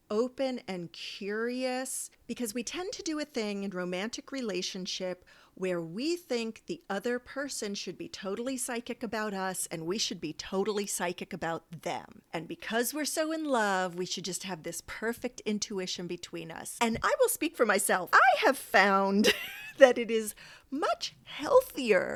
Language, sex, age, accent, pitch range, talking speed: English, female, 40-59, American, 185-265 Hz, 170 wpm